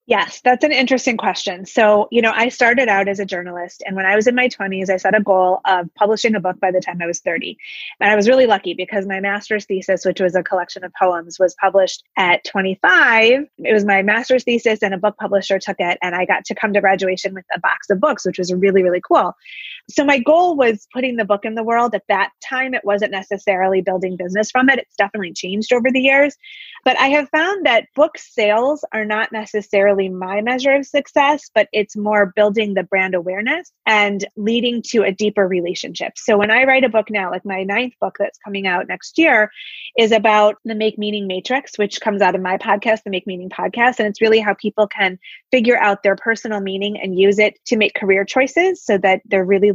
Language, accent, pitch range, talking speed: English, American, 195-245 Hz, 230 wpm